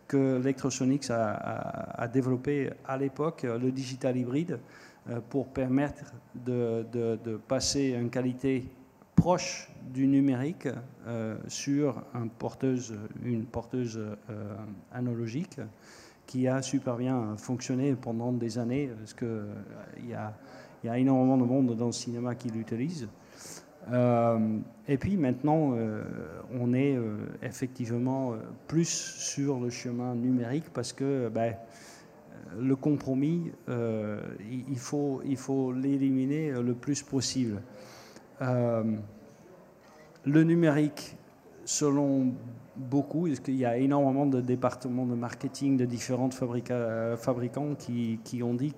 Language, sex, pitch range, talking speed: French, male, 120-140 Hz, 120 wpm